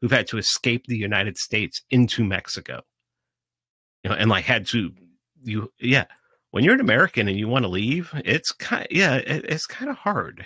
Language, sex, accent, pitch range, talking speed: English, male, American, 100-155 Hz, 195 wpm